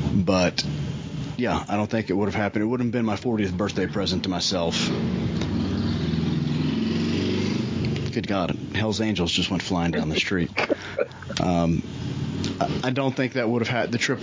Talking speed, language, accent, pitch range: 160 wpm, English, American, 90-115 Hz